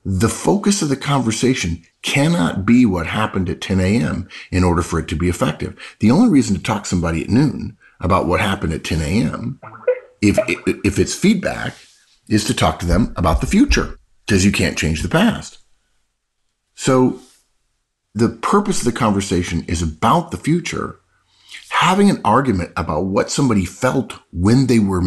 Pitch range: 85-120 Hz